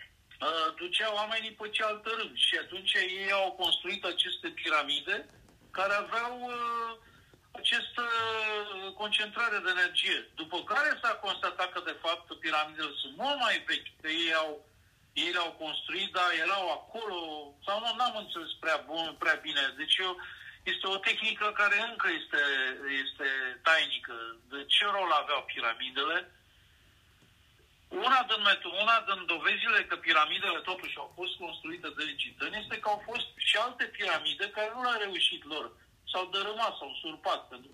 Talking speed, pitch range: 150 wpm, 160-215 Hz